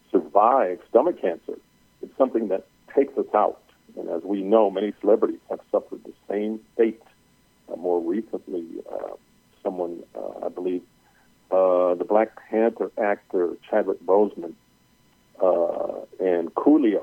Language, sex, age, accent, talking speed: English, male, 50-69, American, 135 wpm